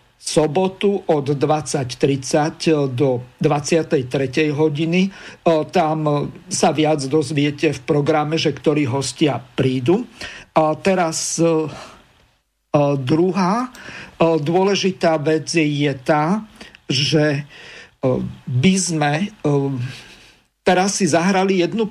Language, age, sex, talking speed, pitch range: Slovak, 50-69, male, 80 wpm, 140-165 Hz